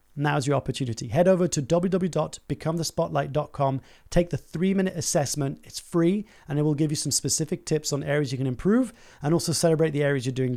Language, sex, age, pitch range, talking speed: English, male, 30-49, 130-165 Hz, 185 wpm